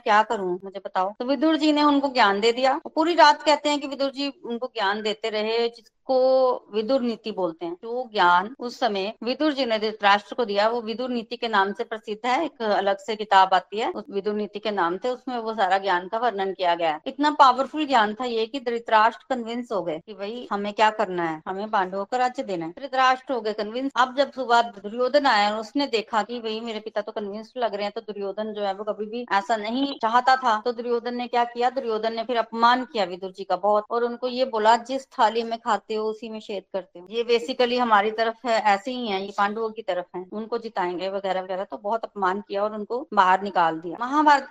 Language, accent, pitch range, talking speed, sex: Hindi, native, 205-250 Hz, 235 wpm, female